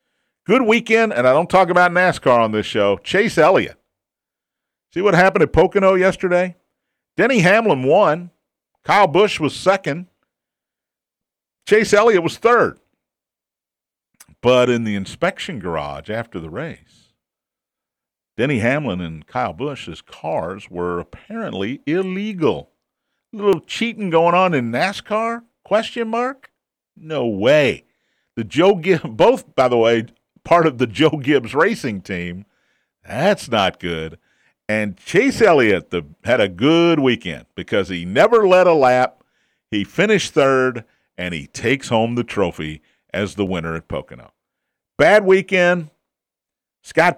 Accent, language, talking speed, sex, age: American, English, 135 wpm, male, 50-69